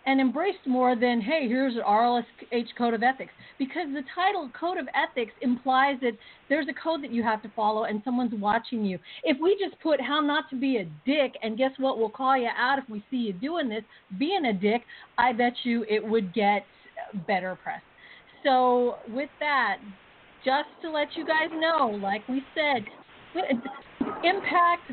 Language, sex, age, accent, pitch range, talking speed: English, female, 50-69, American, 220-275 Hz, 190 wpm